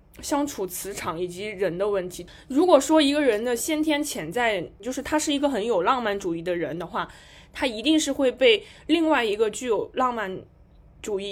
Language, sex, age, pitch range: Chinese, female, 20-39, 190-275 Hz